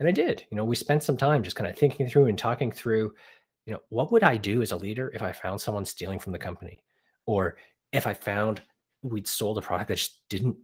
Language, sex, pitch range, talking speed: English, male, 95-130 Hz, 255 wpm